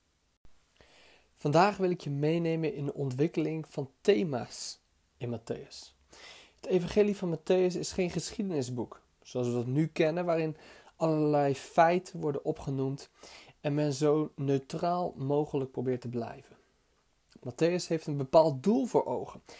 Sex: male